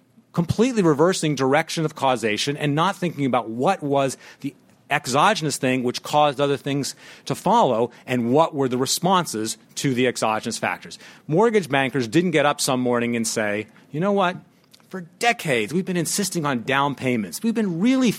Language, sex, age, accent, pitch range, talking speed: English, male, 40-59, American, 125-180 Hz, 170 wpm